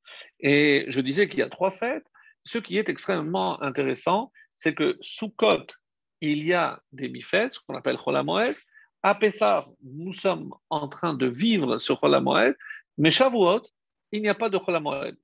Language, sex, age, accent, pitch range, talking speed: French, male, 50-69, French, 155-245 Hz, 175 wpm